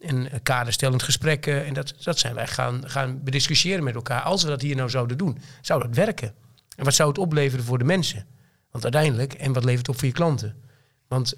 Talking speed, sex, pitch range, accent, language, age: 220 wpm, male, 120-140 Hz, Dutch, Dutch, 40-59